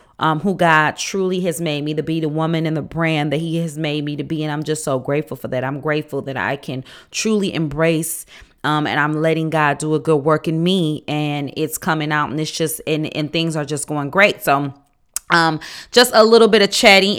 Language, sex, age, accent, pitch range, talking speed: English, female, 30-49, American, 155-185 Hz, 235 wpm